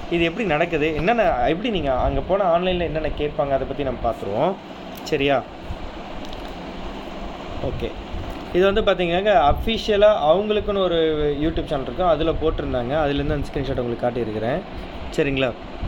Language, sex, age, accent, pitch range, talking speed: Tamil, male, 20-39, native, 135-170 Hz, 130 wpm